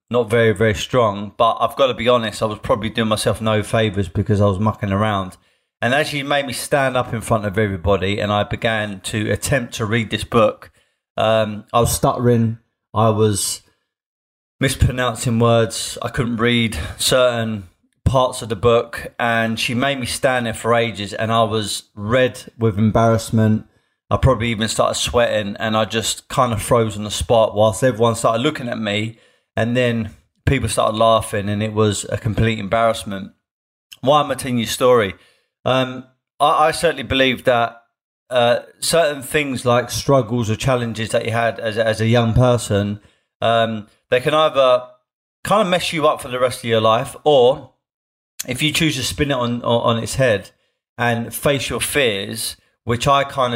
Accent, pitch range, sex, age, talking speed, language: British, 110-125 Hz, male, 20-39, 185 wpm, English